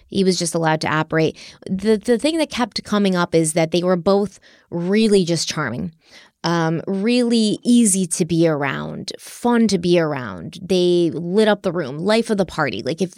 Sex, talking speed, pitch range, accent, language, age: female, 190 wpm, 165-205 Hz, American, English, 20-39